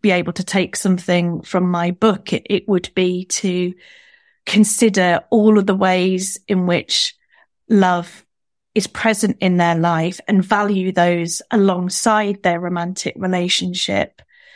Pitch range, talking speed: 180-205 Hz, 130 wpm